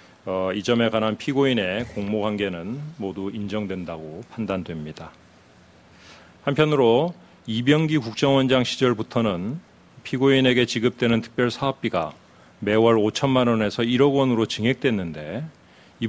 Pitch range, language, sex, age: 100-130 Hz, Korean, male, 40-59